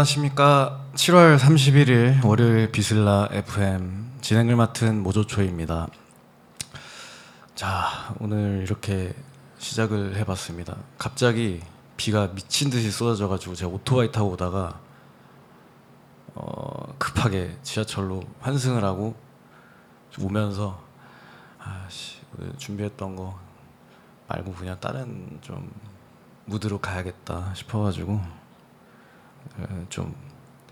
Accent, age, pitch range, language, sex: native, 20-39, 95-120 Hz, Korean, male